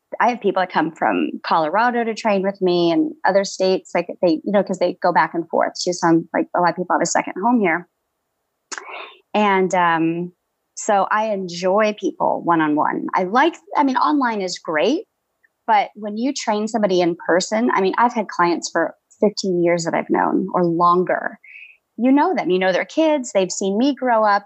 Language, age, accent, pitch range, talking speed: English, 30-49, American, 175-230 Hz, 200 wpm